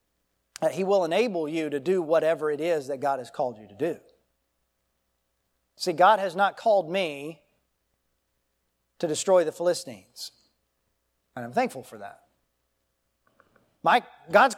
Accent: American